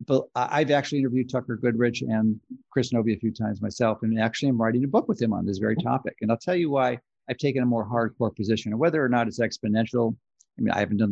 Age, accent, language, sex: 50-69, American, English, male